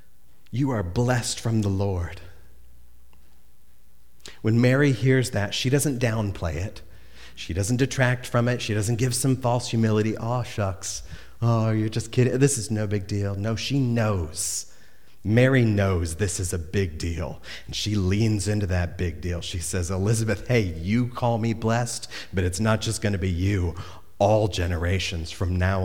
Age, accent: 40-59, American